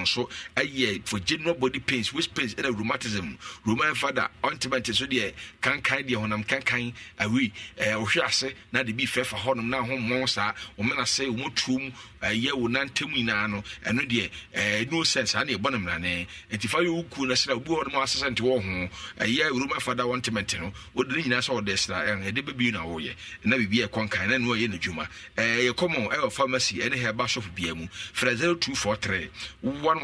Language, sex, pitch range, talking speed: English, male, 110-140 Hz, 100 wpm